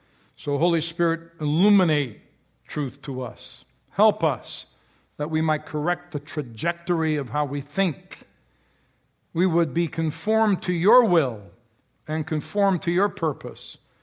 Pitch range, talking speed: 140-175 Hz, 135 wpm